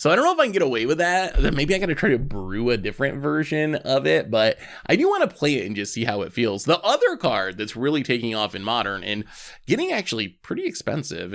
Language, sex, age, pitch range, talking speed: English, male, 20-39, 105-150 Hz, 265 wpm